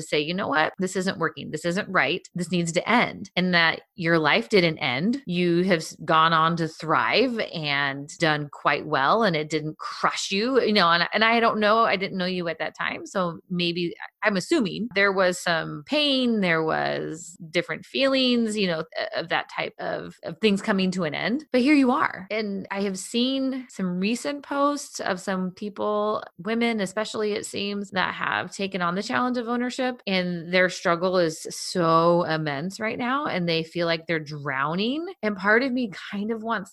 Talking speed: 195 wpm